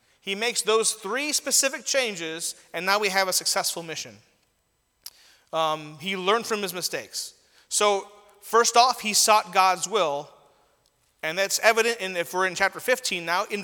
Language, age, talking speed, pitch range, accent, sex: English, 30-49, 160 wpm, 185-235 Hz, American, male